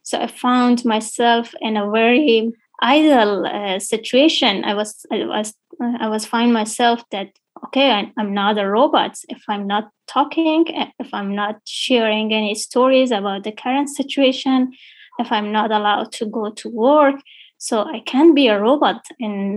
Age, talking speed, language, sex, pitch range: 20-39, 165 wpm, English, female, 215-265 Hz